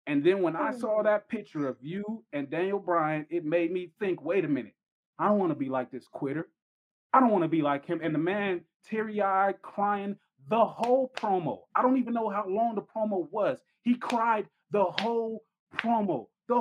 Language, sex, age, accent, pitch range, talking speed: English, male, 30-49, American, 155-230 Hz, 205 wpm